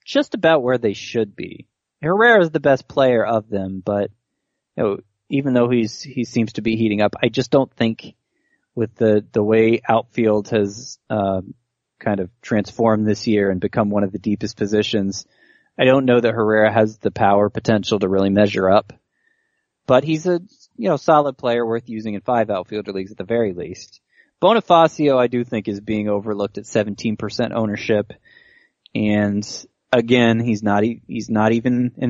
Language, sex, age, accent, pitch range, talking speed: English, male, 20-39, American, 105-125 Hz, 185 wpm